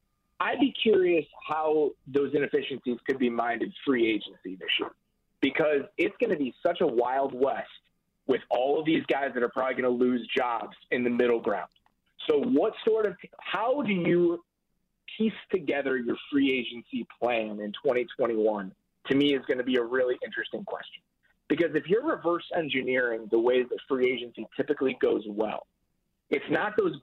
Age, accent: 30-49, American